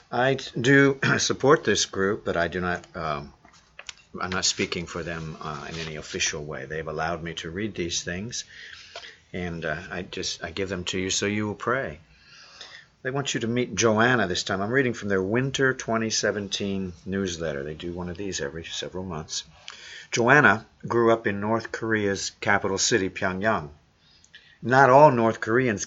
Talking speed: 175 wpm